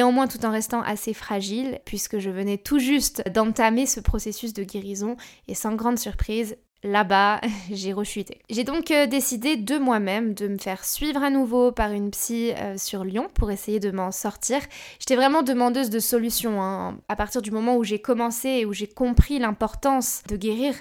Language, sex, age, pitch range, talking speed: French, female, 20-39, 205-245 Hz, 185 wpm